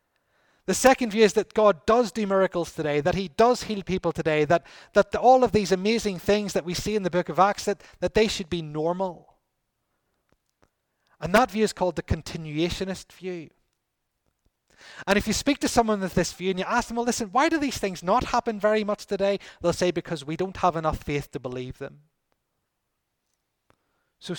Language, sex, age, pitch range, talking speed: English, male, 30-49, 150-200 Hz, 200 wpm